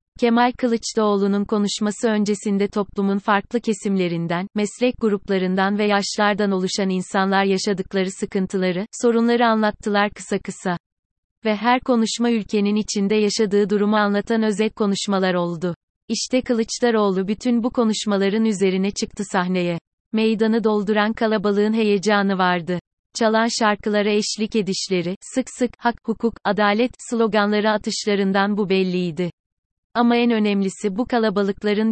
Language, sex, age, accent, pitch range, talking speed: Turkish, female, 30-49, native, 195-225 Hz, 115 wpm